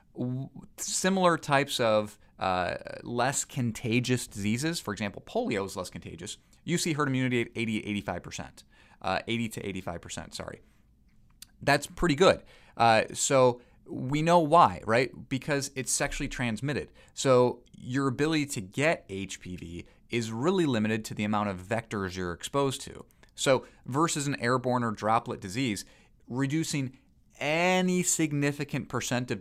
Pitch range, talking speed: 105-140 Hz, 135 wpm